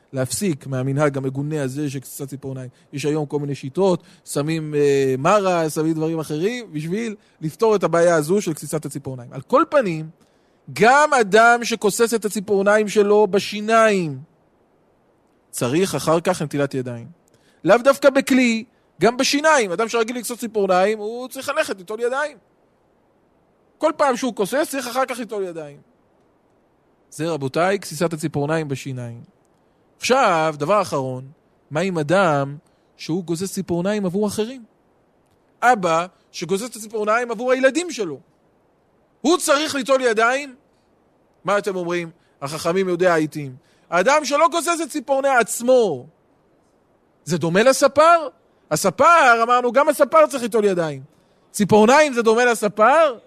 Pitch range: 155-240 Hz